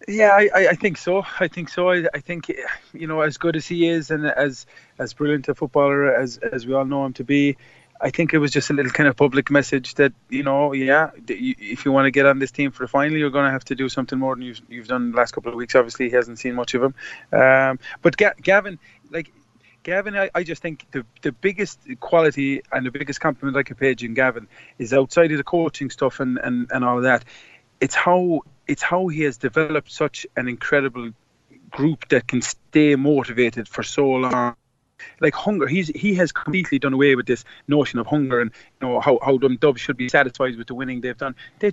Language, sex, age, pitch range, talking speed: English, male, 20-39, 130-165 Hz, 235 wpm